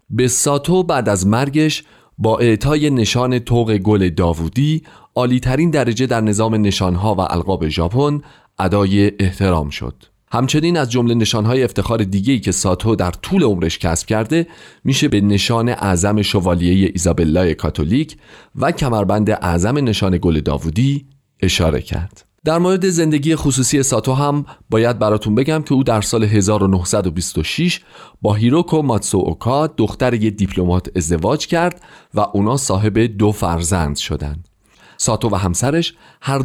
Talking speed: 135 wpm